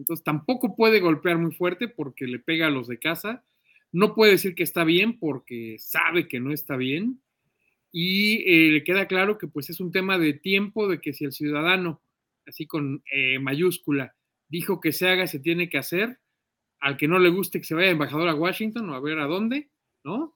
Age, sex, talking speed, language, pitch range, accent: 40-59, male, 210 wpm, Spanish, 150-190 Hz, Mexican